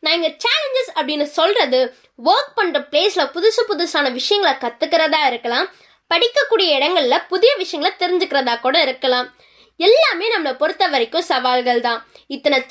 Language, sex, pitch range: Tamil, female, 260-375 Hz